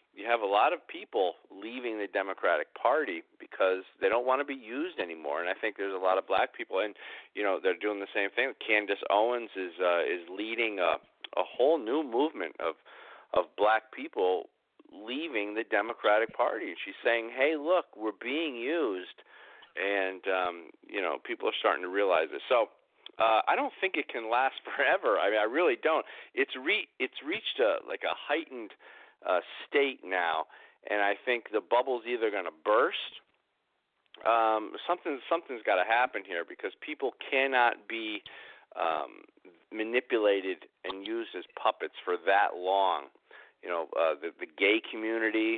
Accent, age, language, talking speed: American, 50-69, English, 175 wpm